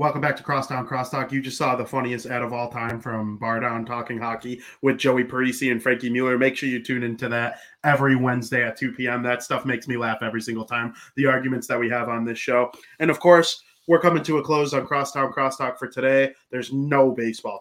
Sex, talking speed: male, 230 wpm